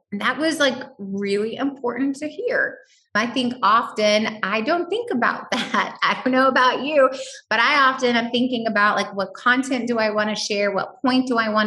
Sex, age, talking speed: female, 20-39, 205 wpm